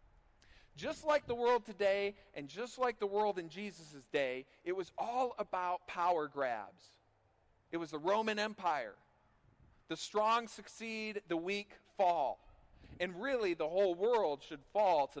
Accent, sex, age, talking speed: American, male, 40-59, 150 wpm